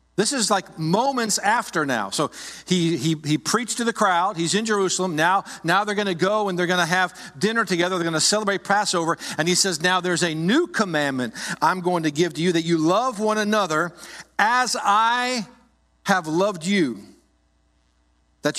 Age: 50-69